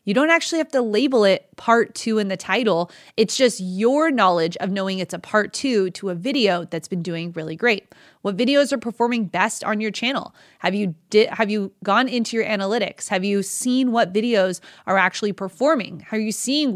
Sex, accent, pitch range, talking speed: female, American, 190-240 Hz, 210 wpm